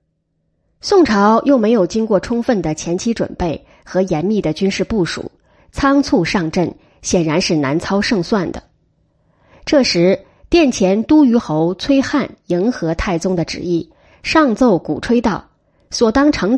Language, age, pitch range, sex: Chinese, 20-39, 170-260 Hz, female